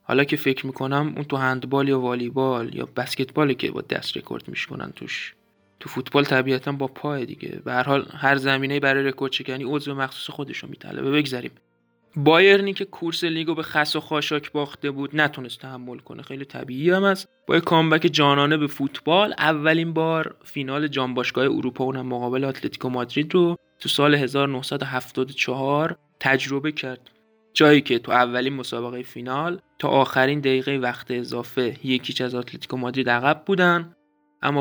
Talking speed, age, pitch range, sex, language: 160 wpm, 20-39, 130-155 Hz, male, Persian